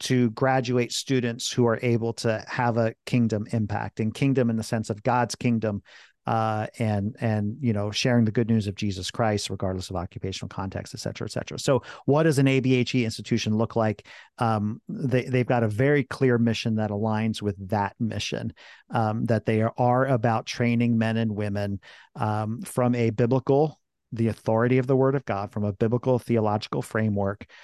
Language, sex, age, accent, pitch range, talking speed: English, male, 50-69, American, 110-125 Hz, 185 wpm